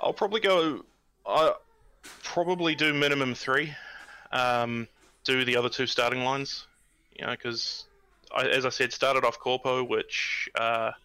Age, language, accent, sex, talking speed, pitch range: 20-39, English, Australian, male, 135 wpm, 115-130 Hz